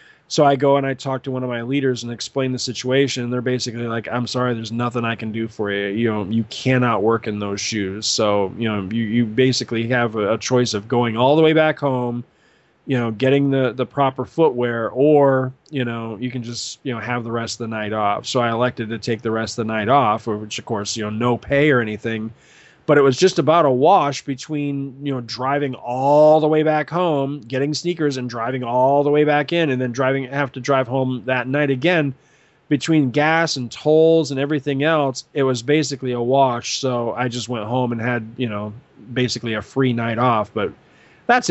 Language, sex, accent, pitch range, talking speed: English, male, American, 115-145 Hz, 225 wpm